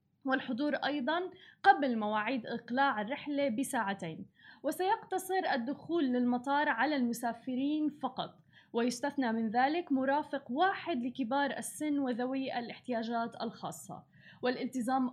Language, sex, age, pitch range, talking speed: Arabic, female, 20-39, 240-290 Hz, 95 wpm